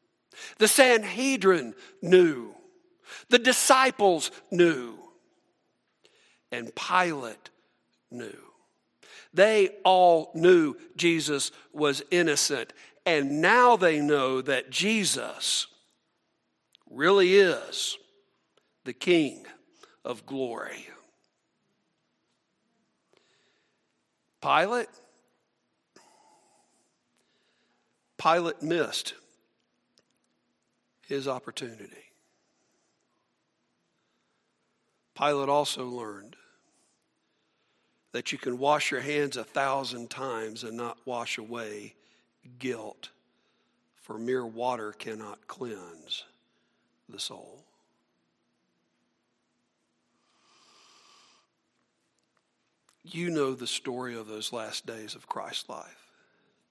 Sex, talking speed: male, 70 wpm